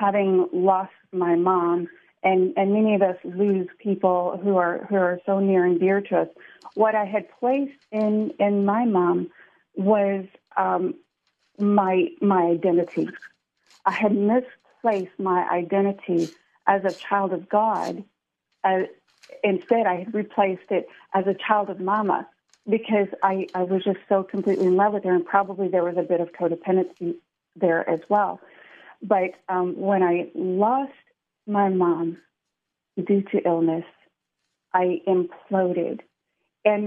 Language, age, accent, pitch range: English, 40-59, American, 180-205 Hz